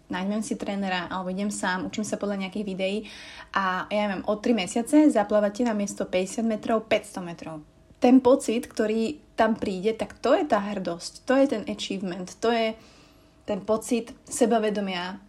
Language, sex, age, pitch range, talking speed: Slovak, female, 20-39, 190-230 Hz, 170 wpm